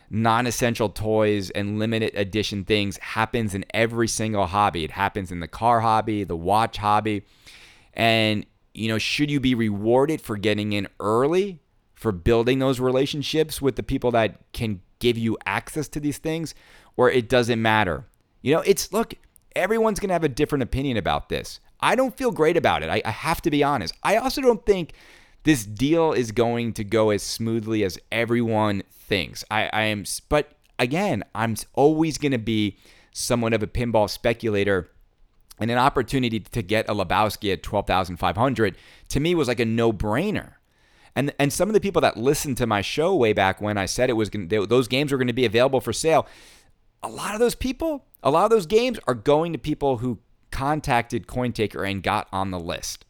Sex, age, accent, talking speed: male, 30-49, American, 200 wpm